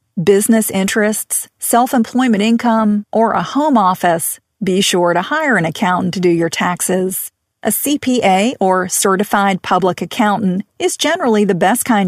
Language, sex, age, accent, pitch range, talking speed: English, female, 40-59, American, 185-240 Hz, 145 wpm